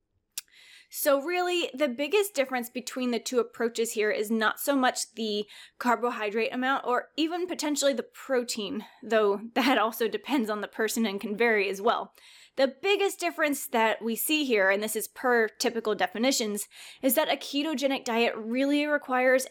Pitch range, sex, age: 210-265 Hz, female, 20-39